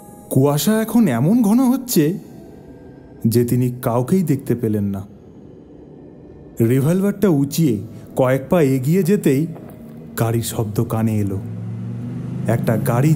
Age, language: 30-49, Bengali